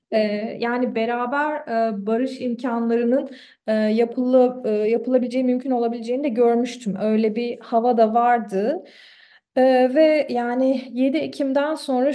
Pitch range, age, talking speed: 225-265 Hz, 30-49, 100 wpm